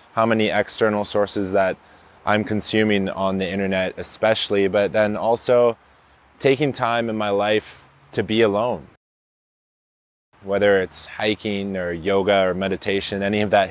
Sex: male